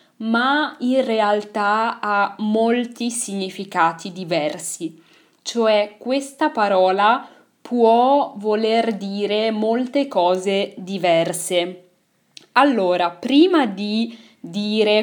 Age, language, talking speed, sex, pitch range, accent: 20-39, Italian, 80 wpm, female, 190-245 Hz, native